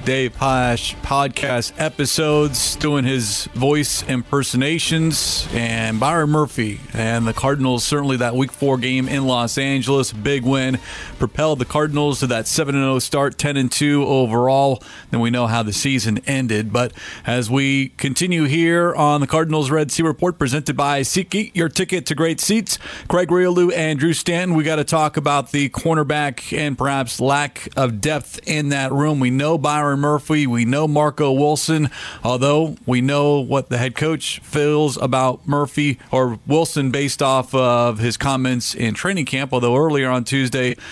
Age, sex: 40-59, male